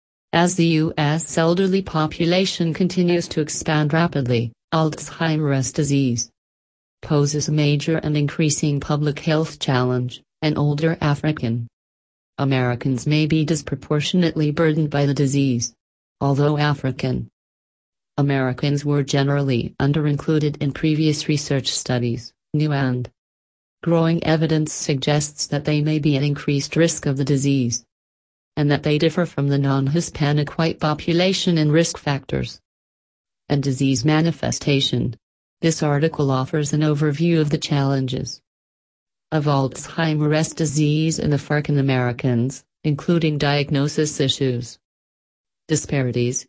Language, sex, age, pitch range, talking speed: English, female, 40-59, 125-155 Hz, 115 wpm